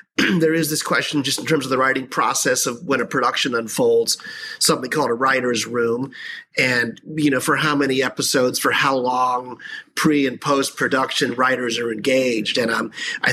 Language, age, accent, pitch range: English, 30-49, American, 125-155 Hz